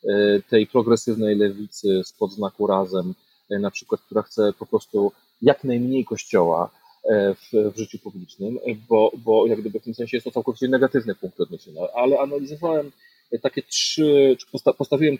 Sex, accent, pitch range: male, native, 110-130 Hz